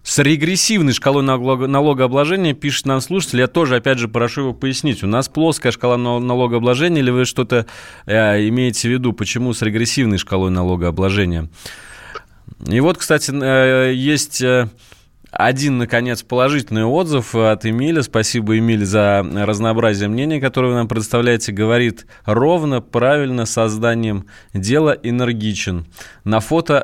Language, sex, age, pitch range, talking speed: Russian, male, 20-39, 110-140 Hz, 130 wpm